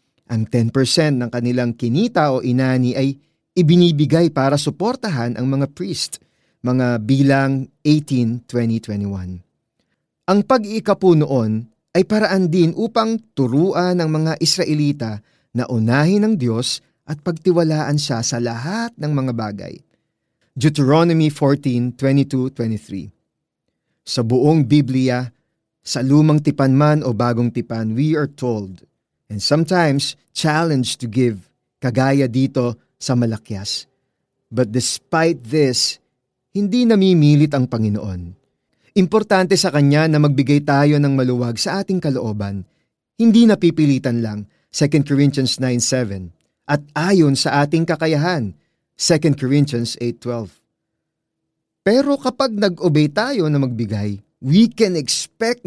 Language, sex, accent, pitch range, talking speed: Filipino, male, native, 120-165 Hz, 115 wpm